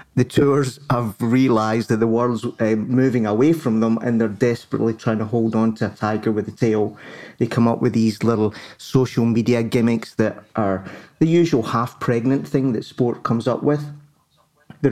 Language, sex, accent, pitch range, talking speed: English, male, British, 110-130 Hz, 185 wpm